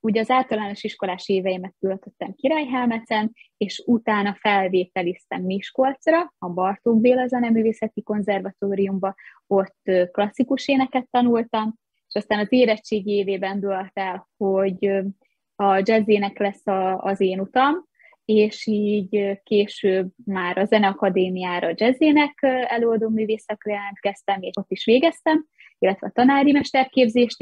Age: 20-39